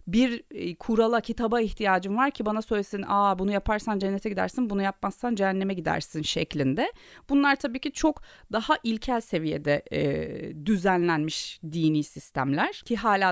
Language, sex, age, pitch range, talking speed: Turkish, female, 30-49, 170-235 Hz, 140 wpm